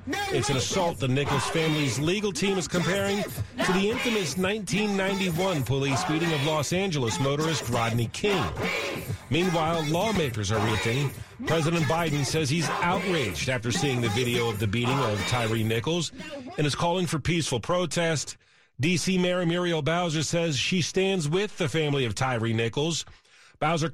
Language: English